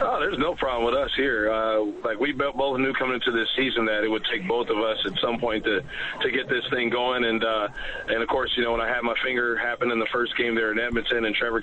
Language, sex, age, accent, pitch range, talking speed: English, male, 40-59, American, 115-125 Hz, 280 wpm